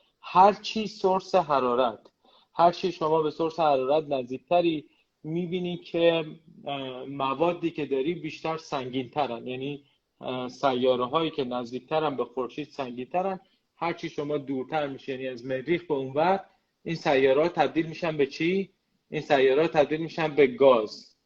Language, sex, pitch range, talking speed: Persian, male, 135-170 Hz, 135 wpm